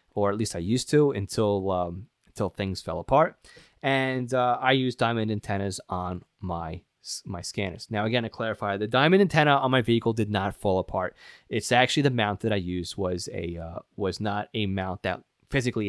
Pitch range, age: 95-115 Hz, 20-39